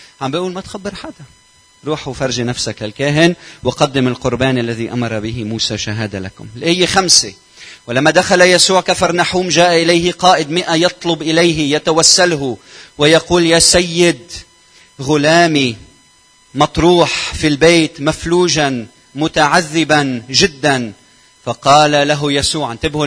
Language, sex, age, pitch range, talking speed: Arabic, male, 40-59, 135-170 Hz, 115 wpm